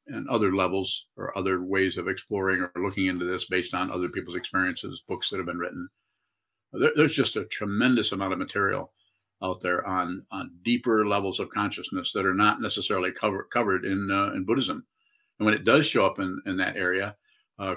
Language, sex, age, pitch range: English, male, 50-69, 95-110 Hz